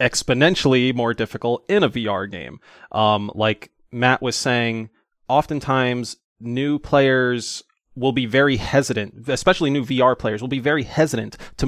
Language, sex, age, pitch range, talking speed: English, male, 20-39, 110-135 Hz, 145 wpm